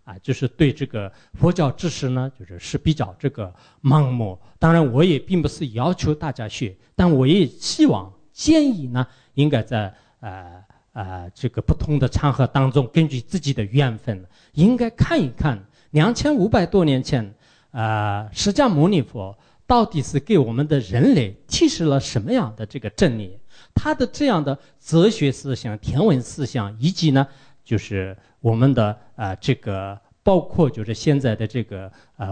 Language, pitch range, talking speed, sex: English, 115-165 Hz, 30 wpm, male